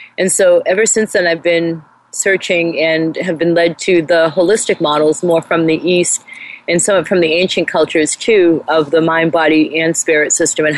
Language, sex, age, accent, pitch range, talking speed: English, female, 30-49, American, 165-190 Hz, 195 wpm